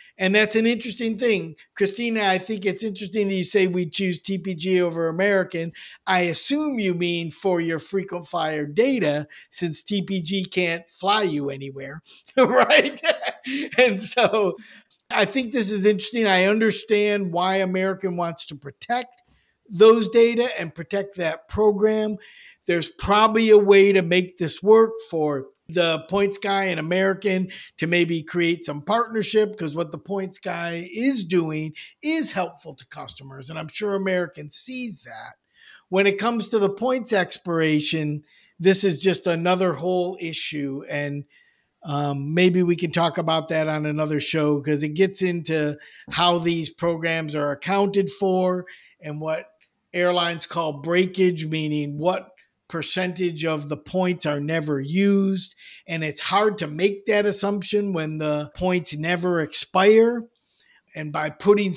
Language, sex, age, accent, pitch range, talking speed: English, male, 50-69, American, 160-205 Hz, 150 wpm